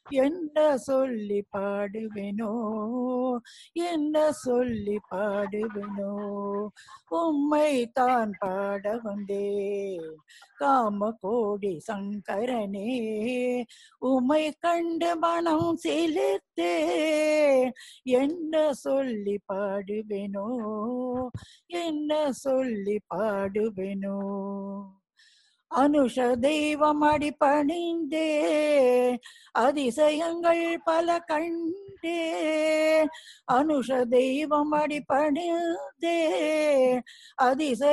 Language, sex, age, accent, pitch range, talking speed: English, female, 60-79, Indian, 210-320 Hz, 45 wpm